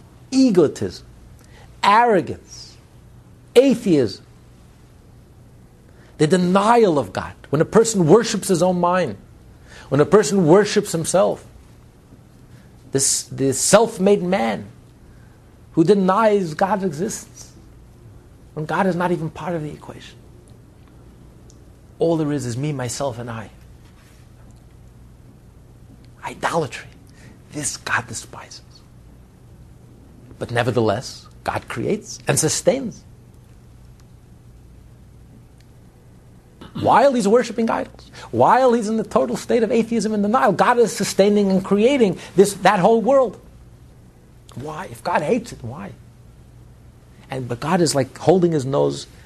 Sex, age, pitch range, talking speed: male, 60-79, 125-205 Hz, 110 wpm